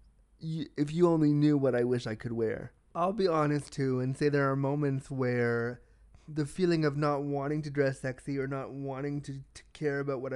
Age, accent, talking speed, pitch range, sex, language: 30-49, American, 210 wpm, 125-150 Hz, male, English